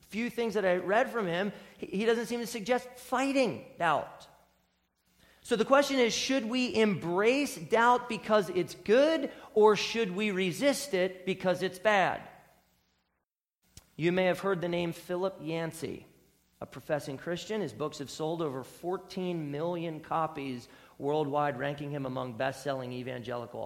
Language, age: English, 40-59